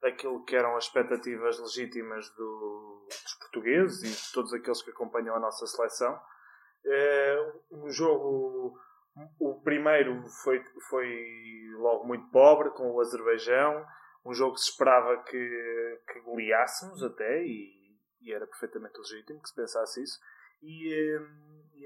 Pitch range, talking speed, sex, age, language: 125-155 Hz, 135 wpm, male, 20-39, Portuguese